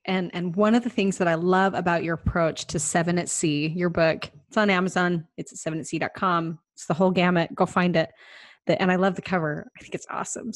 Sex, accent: female, American